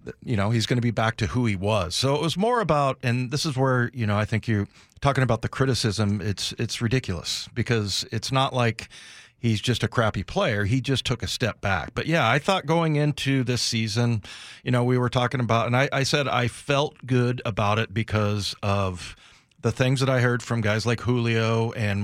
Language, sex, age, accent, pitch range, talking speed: English, male, 40-59, American, 105-125 Hz, 225 wpm